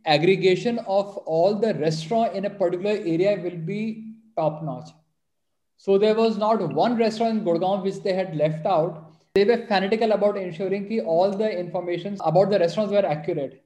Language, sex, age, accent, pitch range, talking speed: English, male, 20-39, Indian, 175-210 Hz, 170 wpm